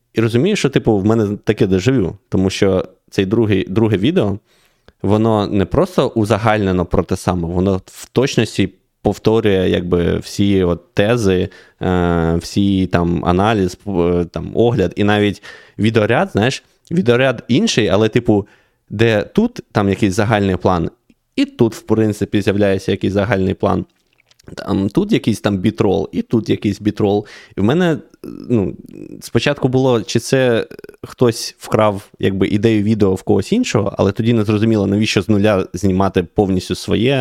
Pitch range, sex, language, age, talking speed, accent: 95-110 Hz, male, Ukrainian, 20-39, 150 wpm, native